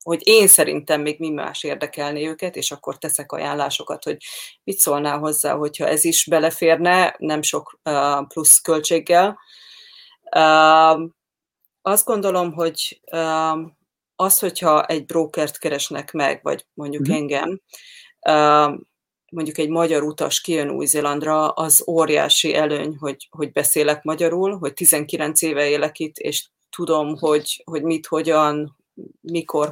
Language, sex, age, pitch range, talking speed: Hungarian, female, 30-49, 150-165 Hz, 130 wpm